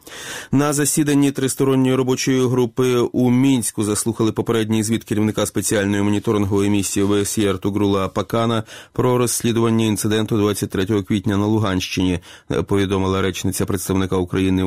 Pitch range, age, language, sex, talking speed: 95-110 Hz, 30-49, Ukrainian, male, 115 wpm